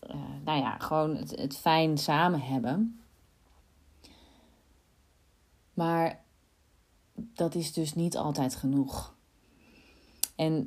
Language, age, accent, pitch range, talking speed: Dutch, 30-49, Dutch, 130-155 Hz, 95 wpm